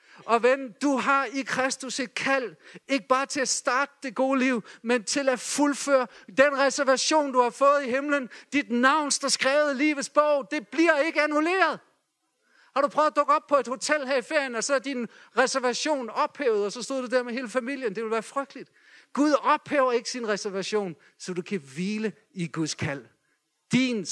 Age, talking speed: 50-69, 200 wpm